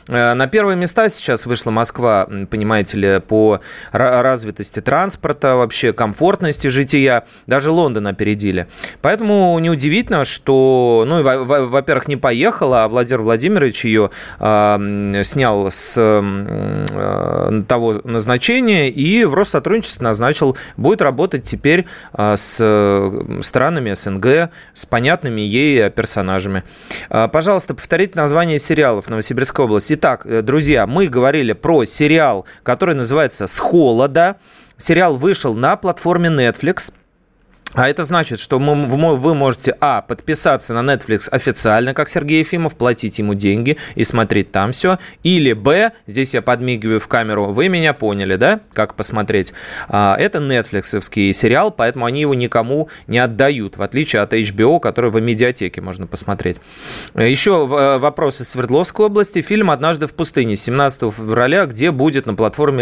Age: 30-49